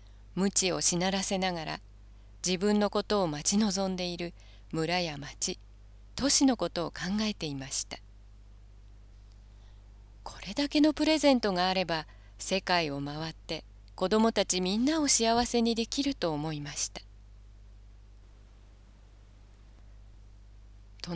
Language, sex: Japanese, female